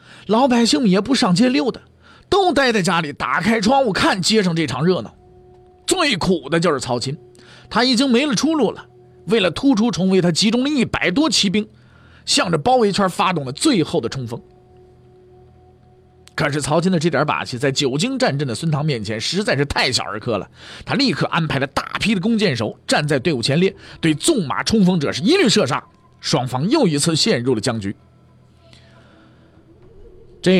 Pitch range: 120-190 Hz